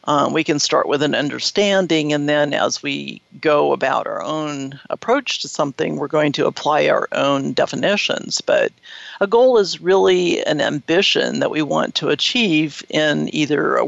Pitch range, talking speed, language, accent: 150-190 Hz, 175 wpm, English, American